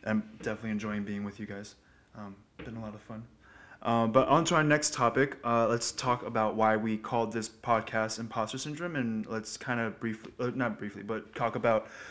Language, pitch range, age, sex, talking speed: English, 105-130 Hz, 20-39, male, 215 wpm